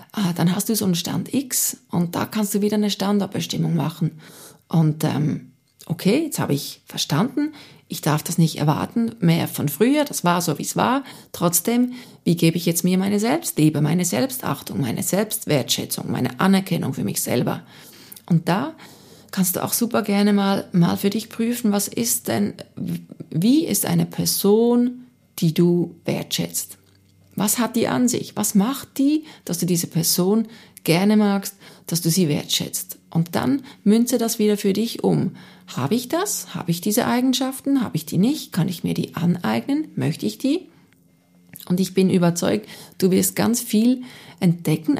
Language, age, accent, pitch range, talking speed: German, 40-59, German, 165-225 Hz, 175 wpm